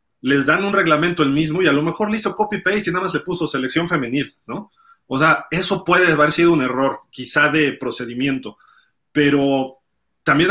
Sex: male